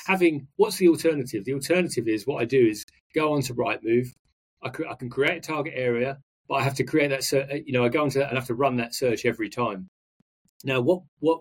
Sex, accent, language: male, British, English